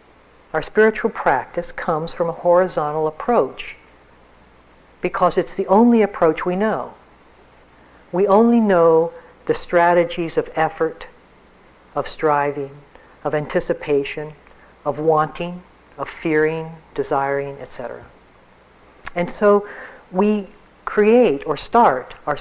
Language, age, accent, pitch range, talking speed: English, 50-69, American, 140-180 Hz, 105 wpm